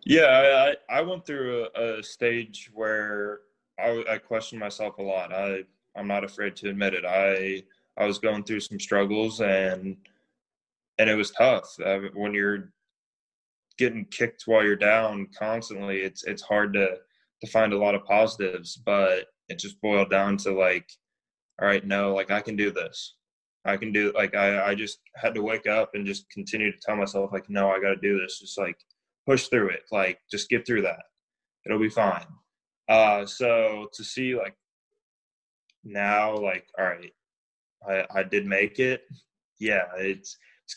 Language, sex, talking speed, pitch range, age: English, male, 180 wpm, 100-115 Hz, 20-39